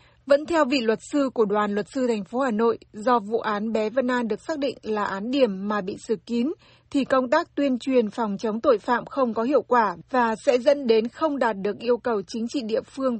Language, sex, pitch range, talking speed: Vietnamese, female, 220-270 Hz, 250 wpm